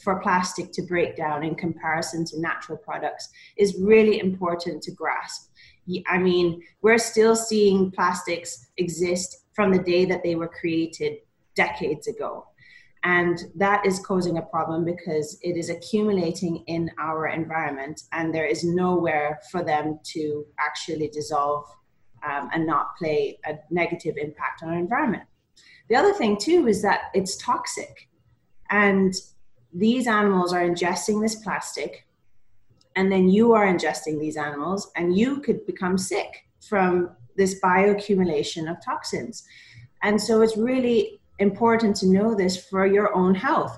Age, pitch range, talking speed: 30-49, 165-210 Hz, 145 wpm